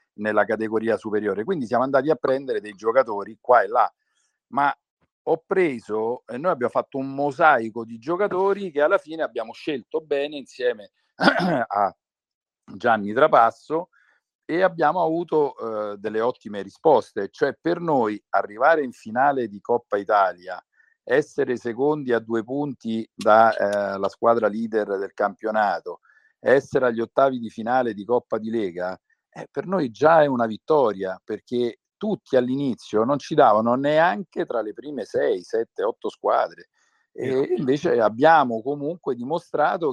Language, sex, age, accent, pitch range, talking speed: Italian, male, 50-69, native, 115-175 Hz, 145 wpm